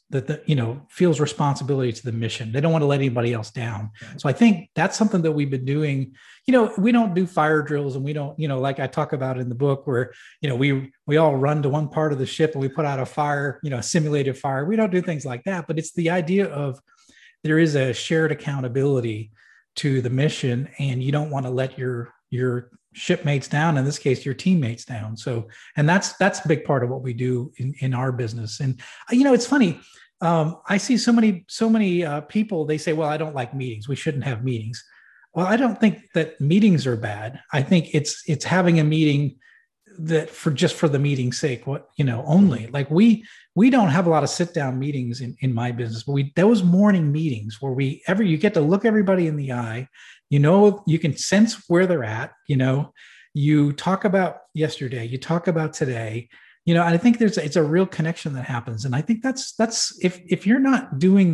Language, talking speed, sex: English, 235 wpm, male